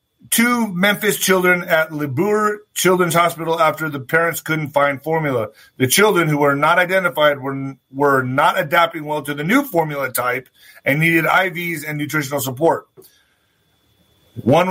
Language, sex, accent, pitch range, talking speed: English, male, American, 145-175 Hz, 145 wpm